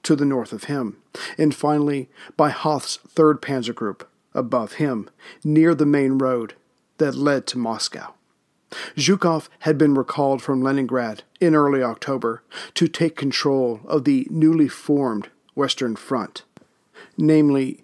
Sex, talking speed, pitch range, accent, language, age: male, 140 wpm, 135-155 Hz, American, English, 40-59